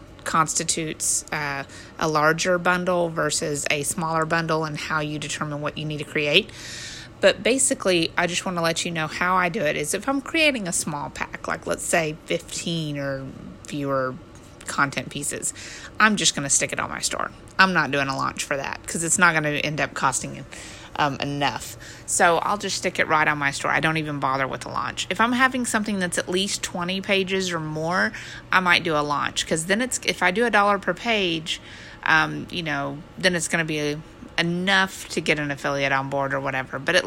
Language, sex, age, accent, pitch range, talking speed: English, female, 30-49, American, 145-185 Hz, 215 wpm